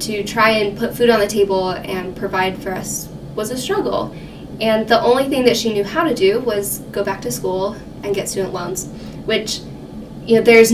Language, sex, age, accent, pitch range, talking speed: English, female, 10-29, American, 200-235 Hz, 210 wpm